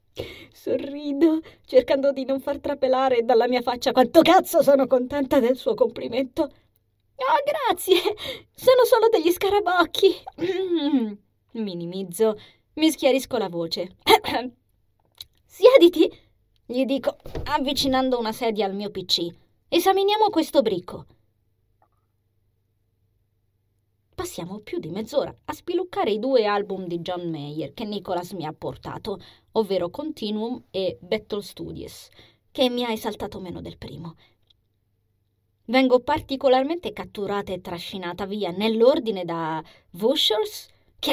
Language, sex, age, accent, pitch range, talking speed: Italian, female, 20-39, native, 180-285 Hz, 115 wpm